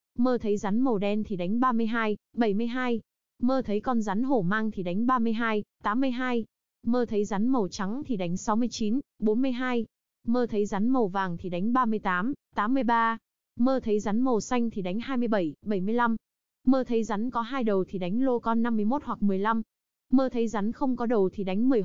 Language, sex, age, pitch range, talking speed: Vietnamese, female, 20-39, 205-250 Hz, 185 wpm